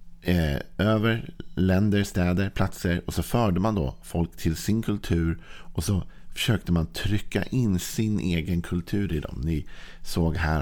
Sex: male